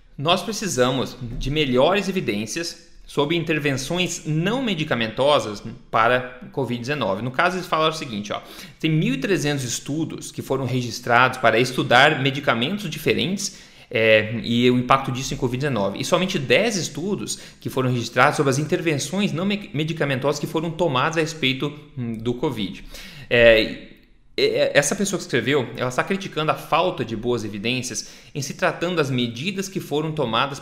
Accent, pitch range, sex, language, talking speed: Brazilian, 125-175 Hz, male, Portuguese, 145 wpm